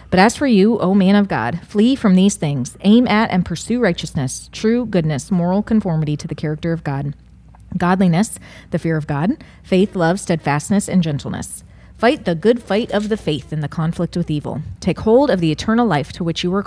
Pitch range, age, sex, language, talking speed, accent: 160-210 Hz, 30-49, female, English, 210 wpm, American